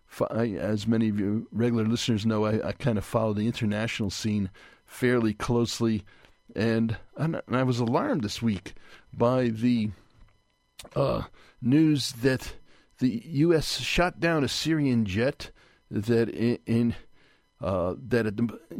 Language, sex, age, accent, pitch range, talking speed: English, male, 40-59, American, 110-135 Hz, 135 wpm